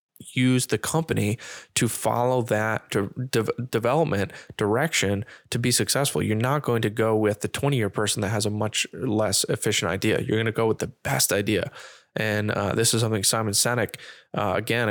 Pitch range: 105-130 Hz